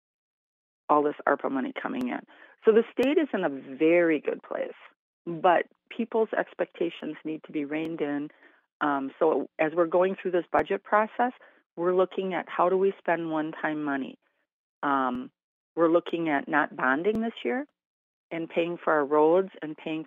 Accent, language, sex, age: American, English, female, 50-69